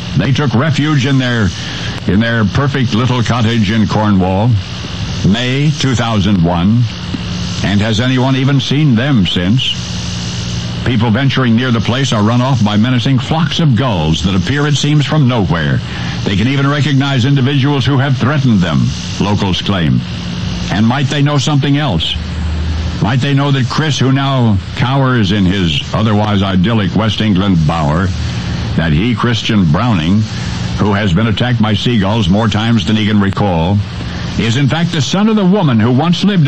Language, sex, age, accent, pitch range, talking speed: English, male, 60-79, American, 90-135 Hz, 165 wpm